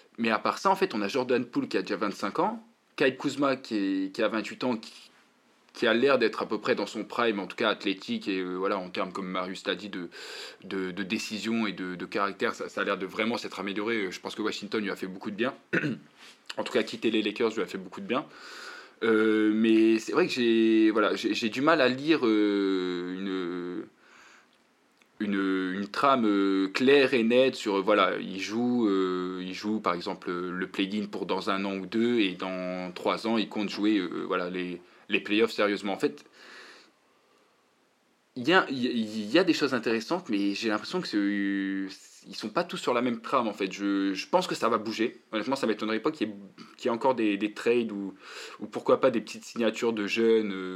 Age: 20-39